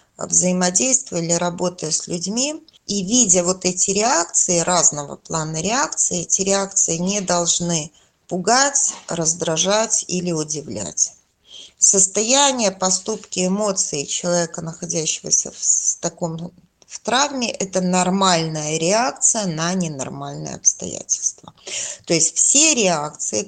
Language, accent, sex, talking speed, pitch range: Russian, native, female, 100 wpm, 170-195 Hz